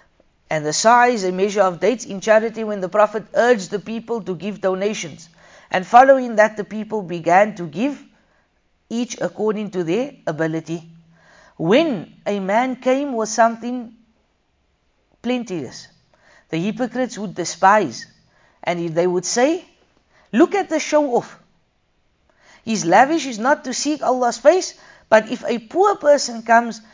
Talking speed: 145 wpm